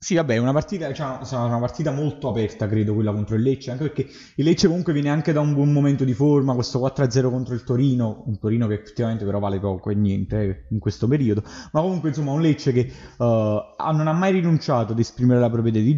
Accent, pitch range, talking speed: native, 105-130 Hz, 230 wpm